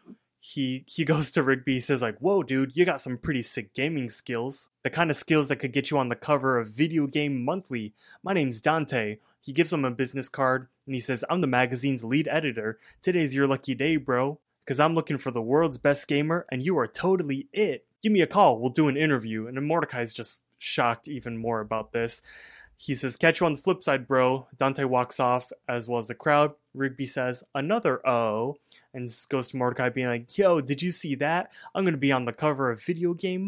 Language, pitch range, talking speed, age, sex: English, 125-155 Hz, 225 wpm, 20-39, male